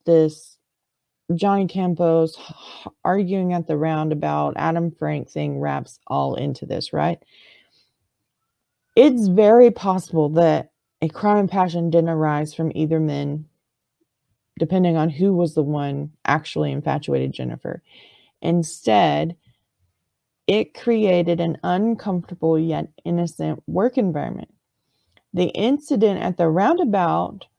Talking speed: 110 wpm